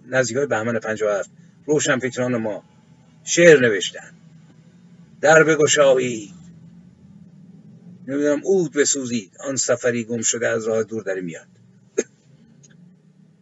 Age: 50-69